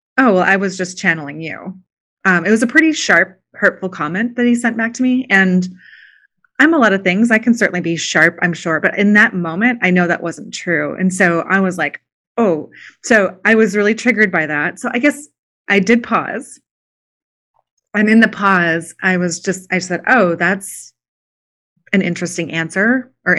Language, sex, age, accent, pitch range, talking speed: English, female, 30-49, American, 165-220 Hz, 200 wpm